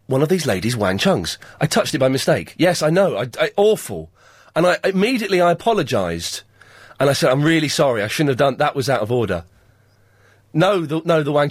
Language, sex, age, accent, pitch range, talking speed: English, male, 30-49, British, 115-190 Hz, 220 wpm